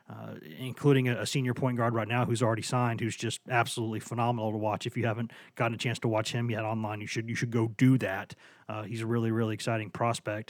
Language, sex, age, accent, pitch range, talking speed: English, male, 30-49, American, 120-155 Hz, 245 wpm